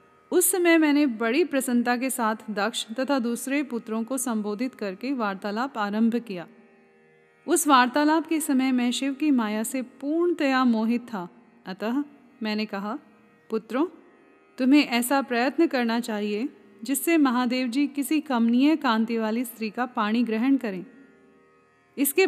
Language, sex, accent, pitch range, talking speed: Hindi, female, native, 220-280 Hz, 135 wpm